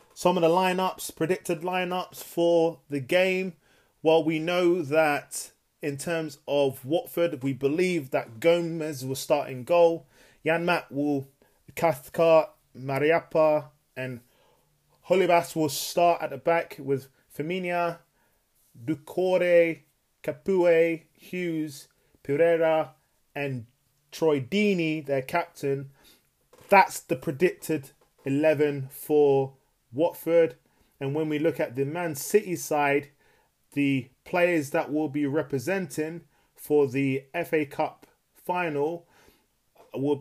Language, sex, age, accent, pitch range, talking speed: English, male, 20-39, British, 140-175 Hz, 110 wpm